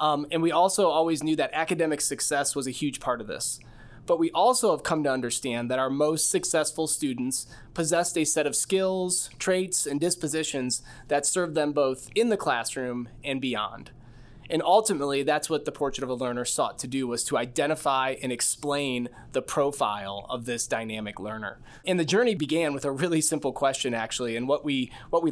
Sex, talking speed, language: male, 195 wpm, English